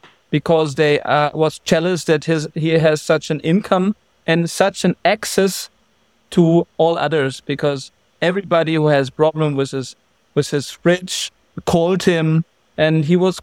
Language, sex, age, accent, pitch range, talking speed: English, male, 50-69, German, 150-175 Hz, 150 wpm